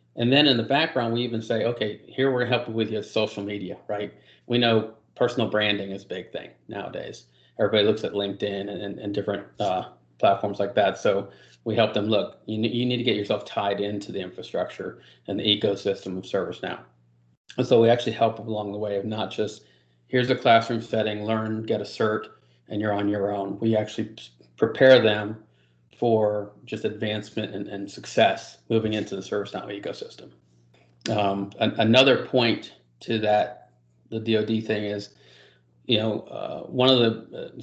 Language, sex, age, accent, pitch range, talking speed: English, male, 30-49, American, 100-115 Hz, 185 wpm